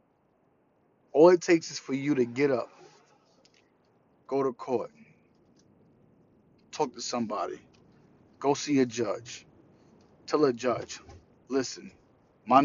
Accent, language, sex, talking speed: American, English, male, 115 wpm